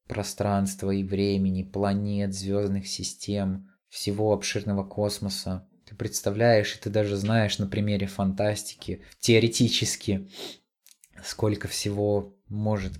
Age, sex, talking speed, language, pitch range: 20-39, male, 100 wpm, Russian, 95-105 Hz